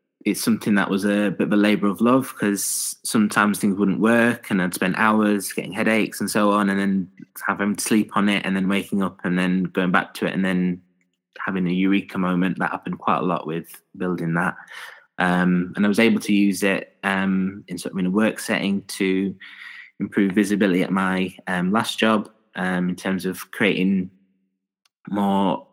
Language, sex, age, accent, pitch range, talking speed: English, male, 20-39, British, 90-105 Hz, 200 wpm